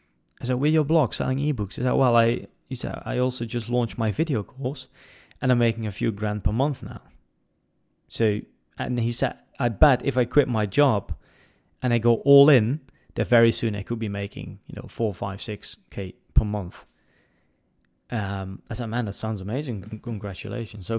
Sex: male